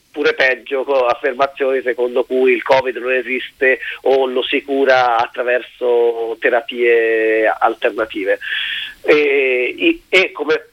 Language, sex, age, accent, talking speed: Italian, male, 40-59, native, 110 wpm